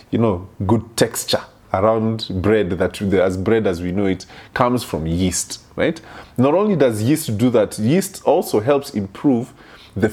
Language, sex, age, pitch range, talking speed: English, male, 20-39, 105-150 Hz, 165 wpm